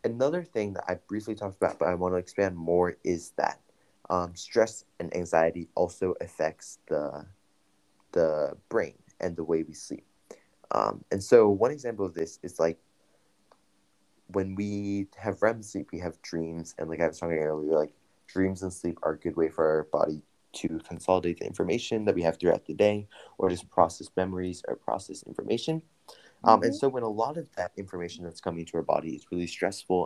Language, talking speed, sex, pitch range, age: English, 195 wpm, male, 85-100 Hz, 20-39